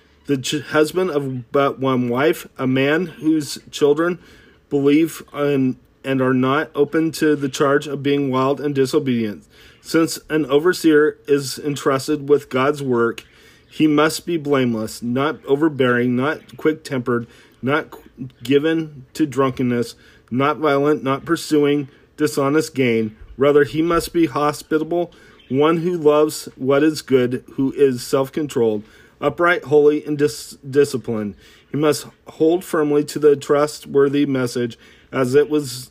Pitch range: 130-150 Hz